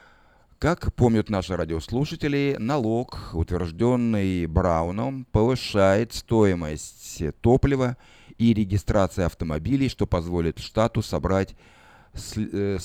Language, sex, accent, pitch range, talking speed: Russian, male, native, 90-115 Hz, 80 wpm